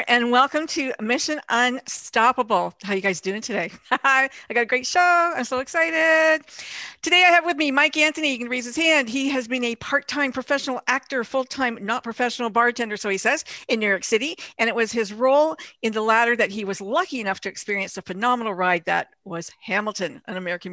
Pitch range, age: 200-260 Hz, 50-69